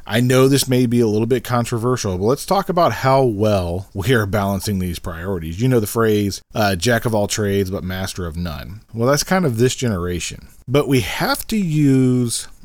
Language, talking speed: English, 210 wpm